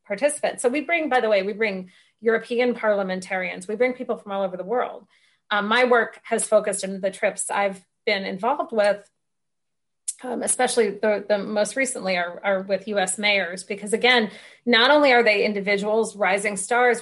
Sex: female